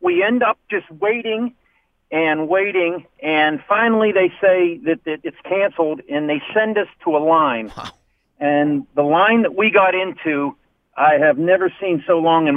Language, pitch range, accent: English, 155-200 Hz, American